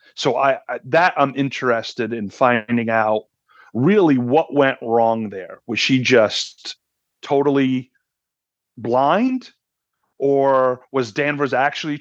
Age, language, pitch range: 40-59, English, 115-140 Hz